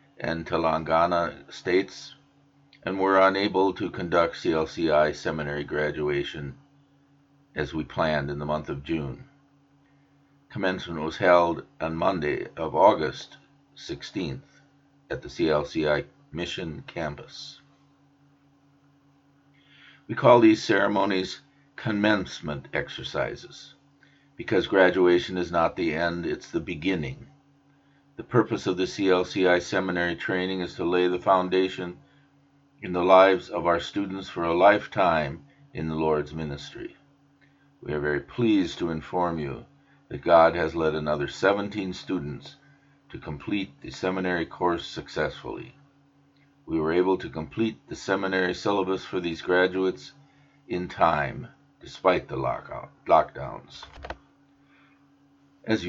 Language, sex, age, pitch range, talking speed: English, male, 50-69, 85-140 Hz, 115 wpm